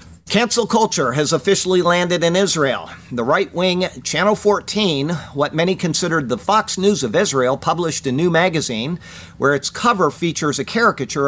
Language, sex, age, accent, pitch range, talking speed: English, male, 50-69, American, 135-185 Hz, 160 wpm